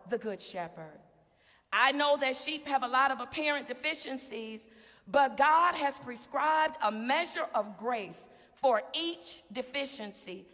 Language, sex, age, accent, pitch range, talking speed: English, female, 40-59, American, 245-320 Hz, 135 wpm